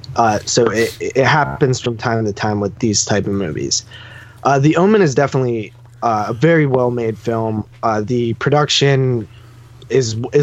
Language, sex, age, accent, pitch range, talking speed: English, male, 20-39, American, 110-135 Hz, 160 wpm